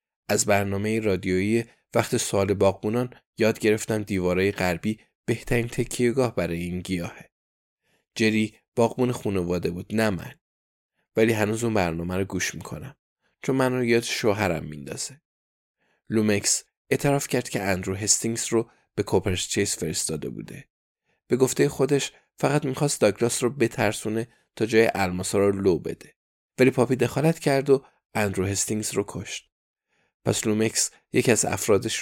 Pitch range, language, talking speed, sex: 100-120 Hz, Persian, 135 wpm, male